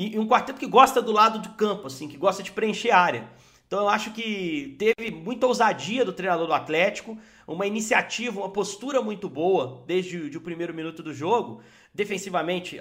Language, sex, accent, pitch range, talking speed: Portuguese, male, Brazilian, 170-220 Hz, 185 wpm